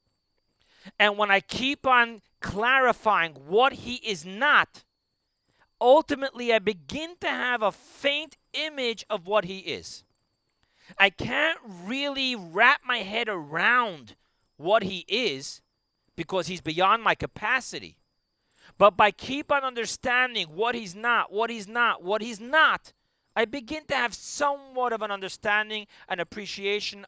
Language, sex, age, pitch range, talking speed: English, male, 40-59, 190-240 Hz, 135 wpm